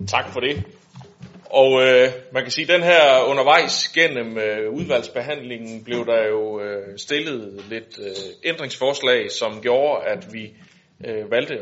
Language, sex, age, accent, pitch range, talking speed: Danish, male, 30-49, native, 105-155 Hz, 150 wpm